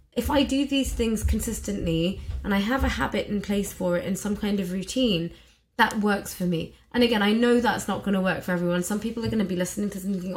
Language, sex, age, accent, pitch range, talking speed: English, female, 20-39, British, 190-240 Hz, 255 wpm